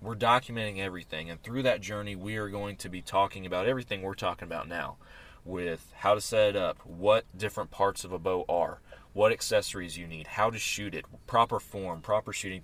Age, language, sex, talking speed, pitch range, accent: 20-39, English, male, 210 wpm, 85-105 Hz, American